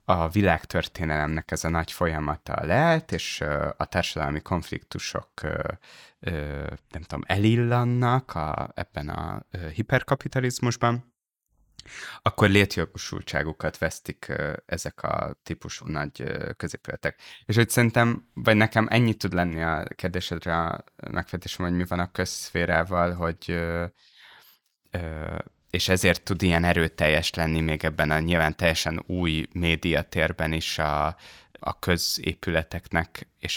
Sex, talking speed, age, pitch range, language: male, 110 wpm, 20-39, 80-100 Hz, Hungarian